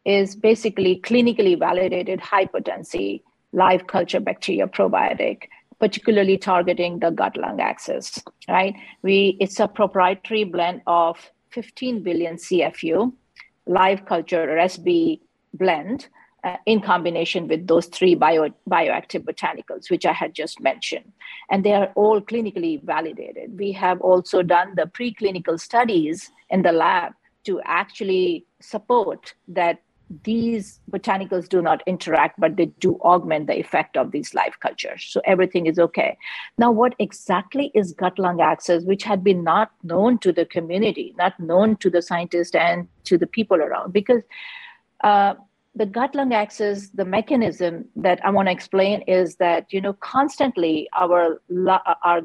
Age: 50-69